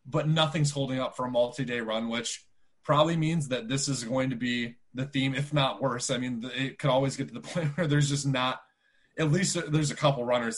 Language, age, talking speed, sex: English, 20-39, 225 wpm, male